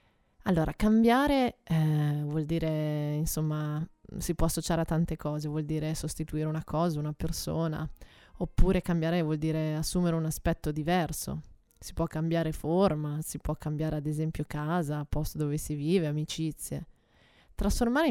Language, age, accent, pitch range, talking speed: Italian, 20-39, native, 150-170 Hz, 145 wpm